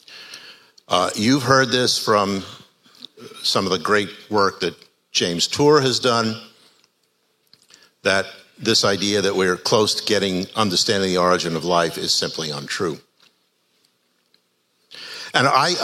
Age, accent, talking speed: 60-79, American, 125 wpm